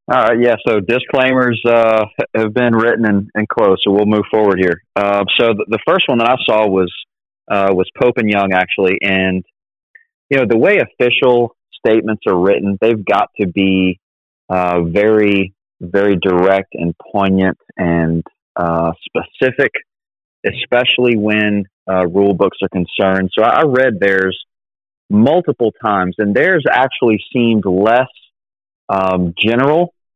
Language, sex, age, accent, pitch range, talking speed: English, male, 30-49, American, 95-115 Hz, 150 wpm